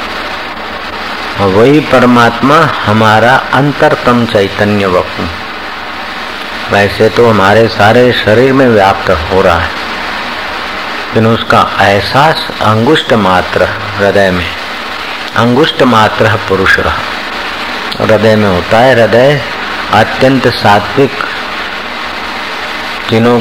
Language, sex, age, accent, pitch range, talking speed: Hindi, male, 50-69, native, 100-120 Hz, 90 wpm